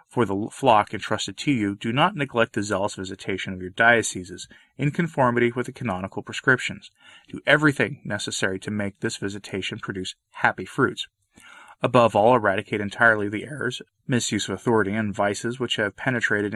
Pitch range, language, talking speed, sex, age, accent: 105-135 Hz, English, 165 wpm, male, 30-49, American